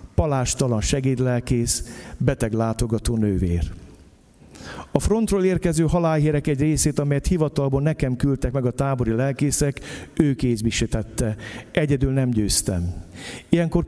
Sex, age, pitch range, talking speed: male, 50-69, 105-150 Hz, 110 wpm